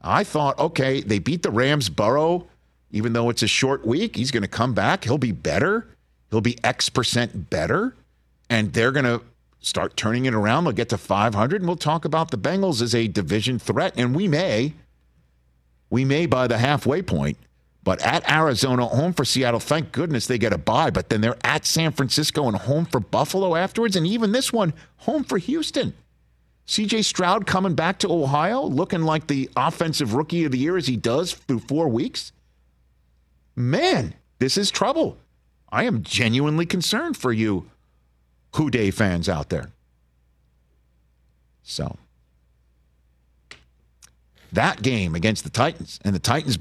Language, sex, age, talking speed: English, male, 50-69, 170 wpm